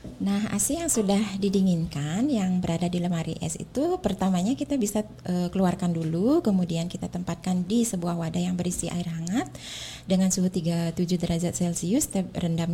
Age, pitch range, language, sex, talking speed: 20-39, 175-215 Hz, Indonesian, female, 155 wpm